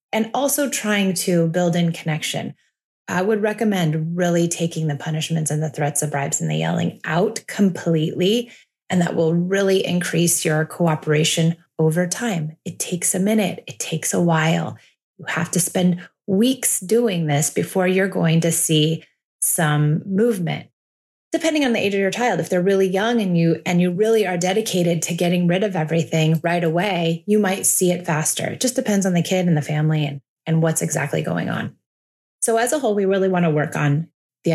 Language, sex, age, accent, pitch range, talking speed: English, female, 30-49, American, 160-195 Hz, 195 wpm